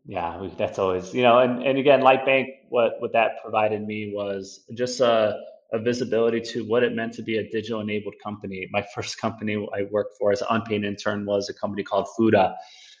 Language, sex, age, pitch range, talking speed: English, male, 30-49, 105-120 Hz, 210 wpm